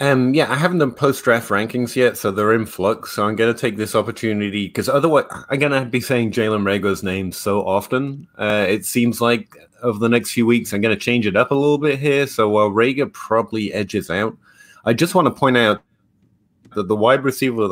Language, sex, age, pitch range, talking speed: English, male, 30-49, 95-115 Hz, 225 wpm